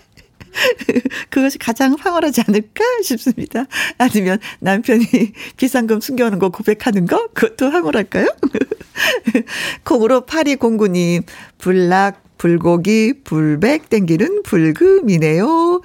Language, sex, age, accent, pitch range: Korean, female, 50-69, native, 190-275 Hz